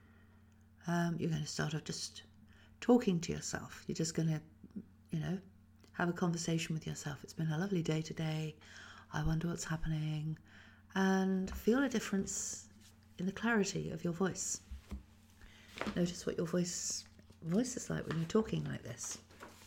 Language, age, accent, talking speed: English, 50-69, British, 160 wpm